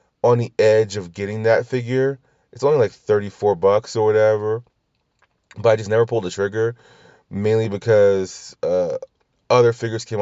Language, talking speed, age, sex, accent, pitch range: English, 160 wpm, 30-49, male, American, 110-180 Hz